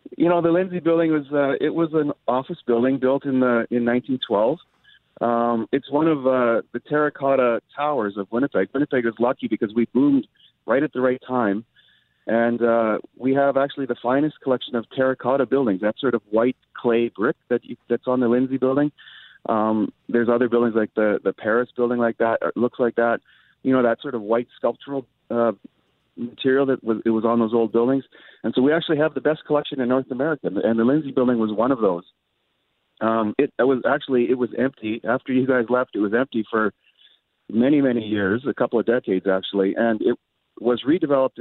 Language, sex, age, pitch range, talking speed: English, male, 40-59, 115-135 Hz, 205 wpm